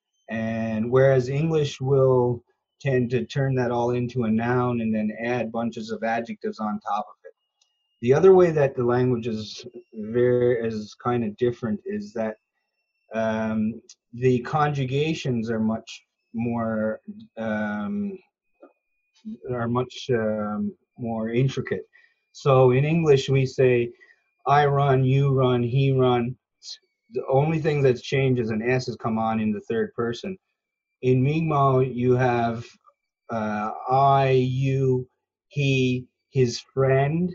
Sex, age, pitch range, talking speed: male, 30-49, 120-145 Hz, 135 wpm